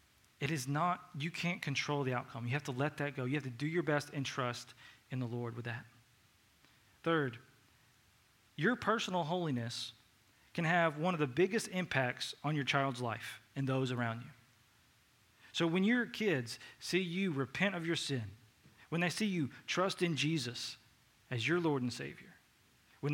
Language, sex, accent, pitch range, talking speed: English, male, American, 120-155 Hz, 180 wpm